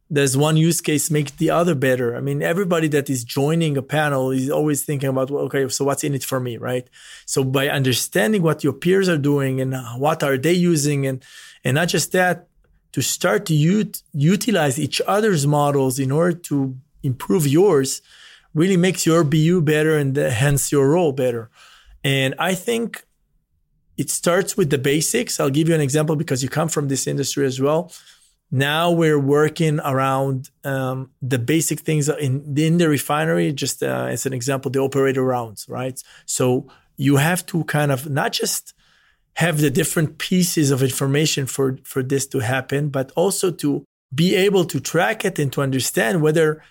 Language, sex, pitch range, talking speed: English, male, 135-165 Hz, 180 wpm